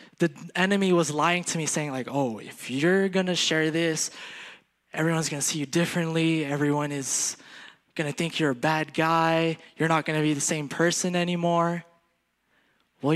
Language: English